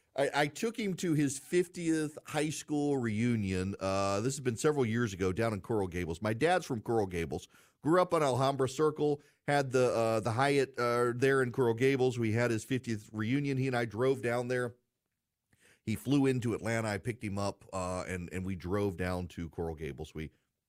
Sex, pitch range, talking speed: male, 115-170 Hz, 205 wpm